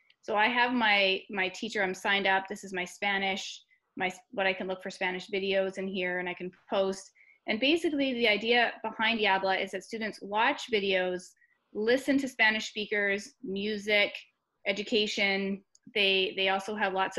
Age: 20-39